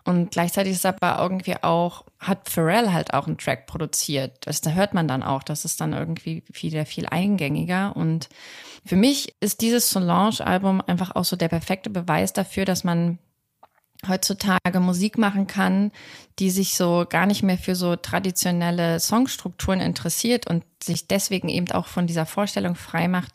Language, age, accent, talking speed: German, 30-49, German, 165 wpm